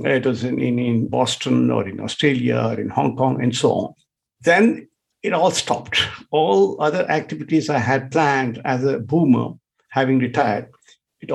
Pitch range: 130-160 Hz